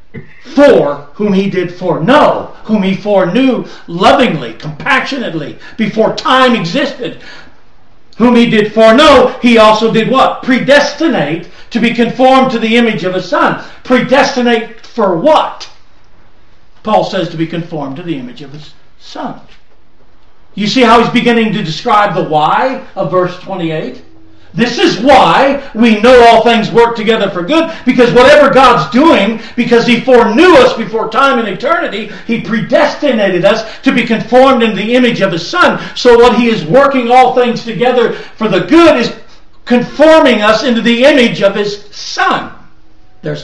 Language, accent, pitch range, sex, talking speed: English, American, 175-250 Hz, male, 155 wpm